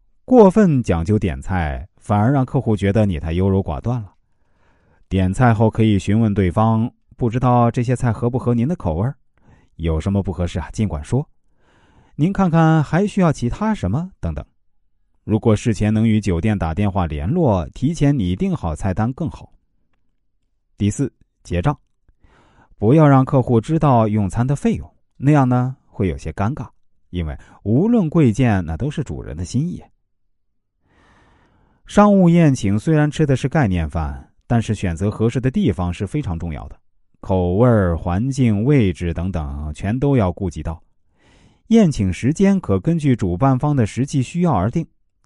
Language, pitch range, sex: Chinese, 90-130 Hz, male